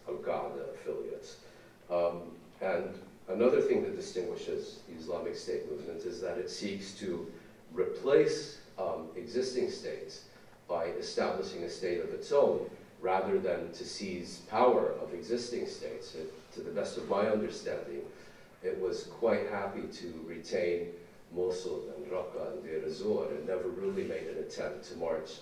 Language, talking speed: English, 150 wpm